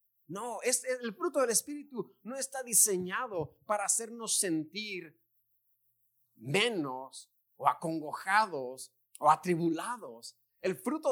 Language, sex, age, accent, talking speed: Spanish, male, 40-59, Mexican, 105 wpm